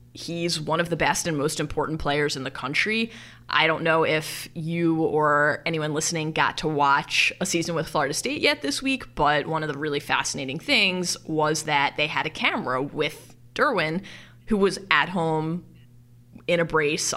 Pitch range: 145-180 Hz